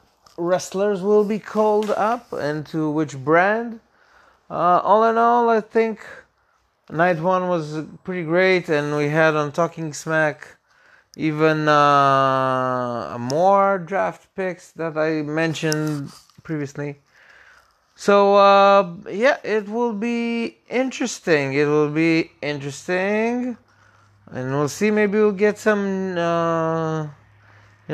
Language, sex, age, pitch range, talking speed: English, male, 30-49, 135-195 Hz, 120 wpm